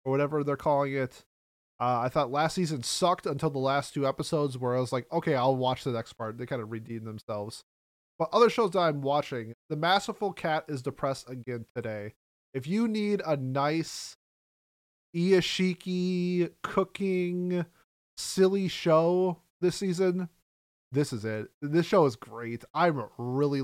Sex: male